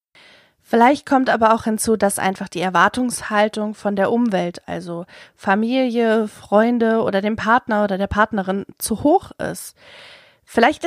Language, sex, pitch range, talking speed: German, female, 200-260 Hz, 140 wpm